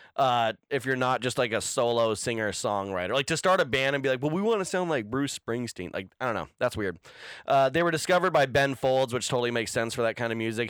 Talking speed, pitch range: 270 wpm, 120-150 Hz